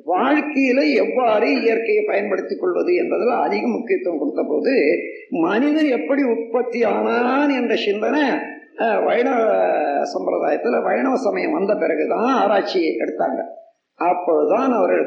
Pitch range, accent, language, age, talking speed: 240-405 Hz, native, Tamil, 50-69, 75 wpm